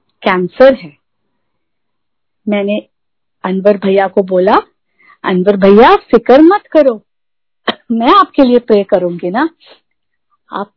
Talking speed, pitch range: 105 wpm, 205-250 Hz